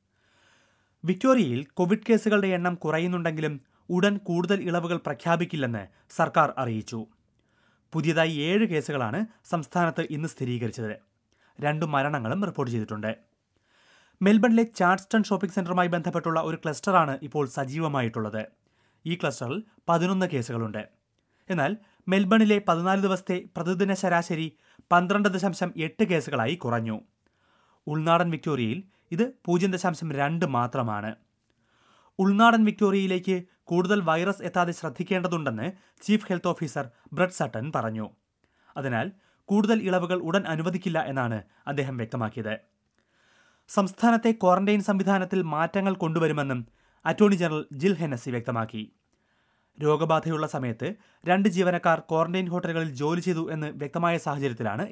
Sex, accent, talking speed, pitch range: male, native, 100 wpm, 135-185 Hz